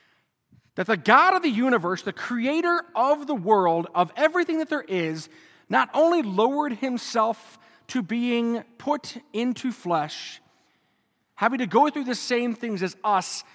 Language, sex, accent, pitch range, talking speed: English, male, American, 180-270 Hz, 150 wpm